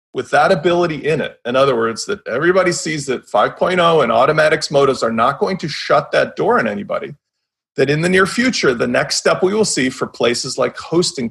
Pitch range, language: 135-185 Hz, English